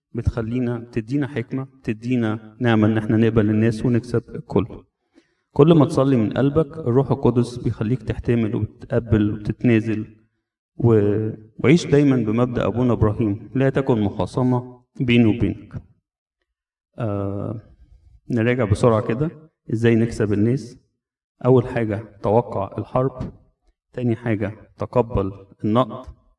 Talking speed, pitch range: 110 wpm, 105-120 Hz